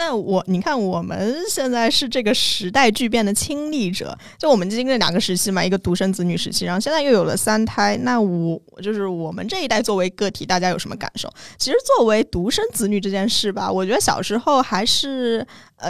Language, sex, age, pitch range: Chinese, female, 20-39, 190-255 Hz